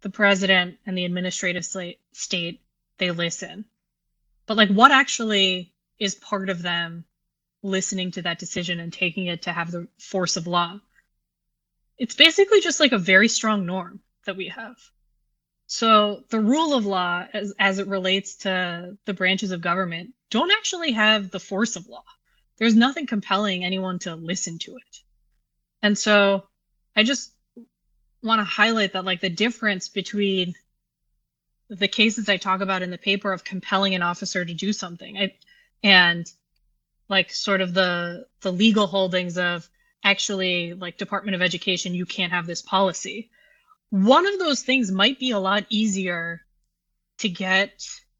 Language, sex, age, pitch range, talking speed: English, female, 20-39, 175-215 Hz, 160 wpm